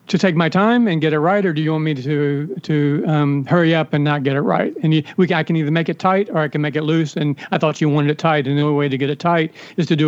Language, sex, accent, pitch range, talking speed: English, male, American, 145-165 Hz, 340 wpm